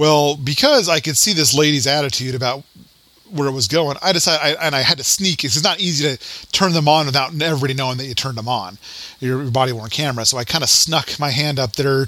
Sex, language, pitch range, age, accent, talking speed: male, English, 130-165 Hz, 30-49, American, 235 wpm